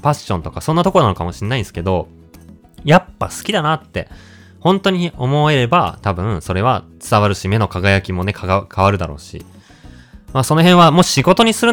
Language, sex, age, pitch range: Japanese, male, 20-39, 90-135 Hz